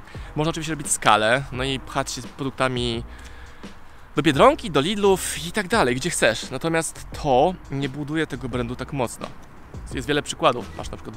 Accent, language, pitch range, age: native, Polish, 115-155 Hz, 20-39